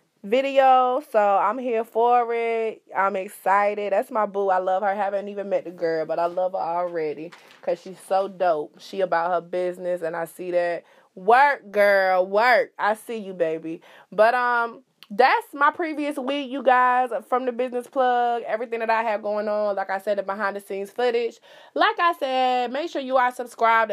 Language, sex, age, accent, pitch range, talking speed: English, female, 20-39, American, 190-250 Hz, 195 wpm